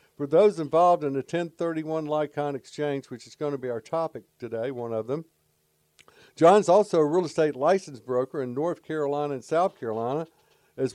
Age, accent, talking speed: 60-79, American, 180 wpm